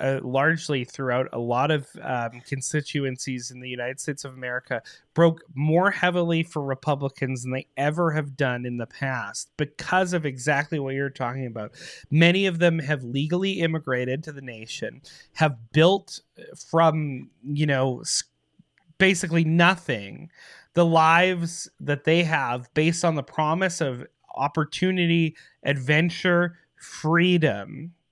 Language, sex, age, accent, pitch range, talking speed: English, male, 30-49, American, 135-170 Hz, 135 wpm